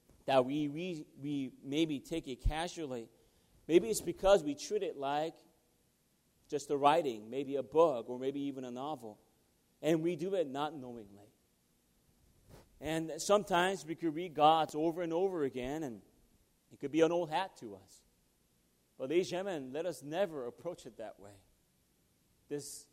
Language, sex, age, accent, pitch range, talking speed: English, male, 40-59, American, 120-180 Hz, 160 wpm